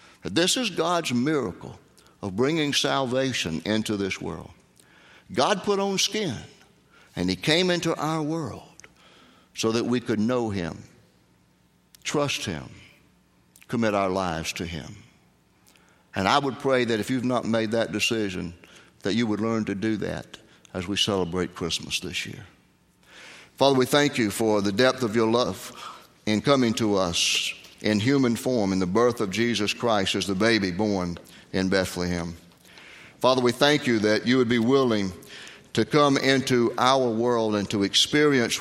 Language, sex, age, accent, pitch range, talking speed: English, male, 60-79, American, 100-130 Hz, 160 wpm